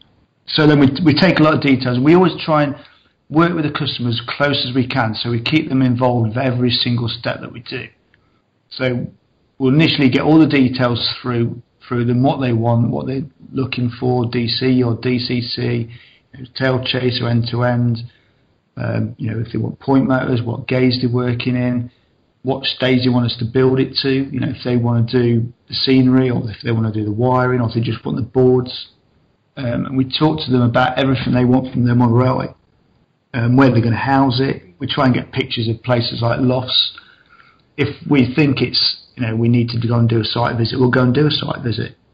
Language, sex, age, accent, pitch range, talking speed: English, male, 40-59, British, 120-130 Hz, 225 wpm